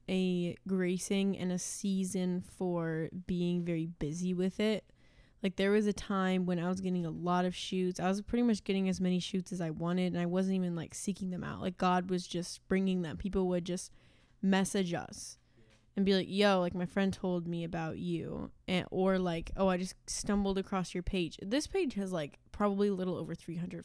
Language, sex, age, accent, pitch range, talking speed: English, female, 10-29, American, 175-195 Hz, 210 wpm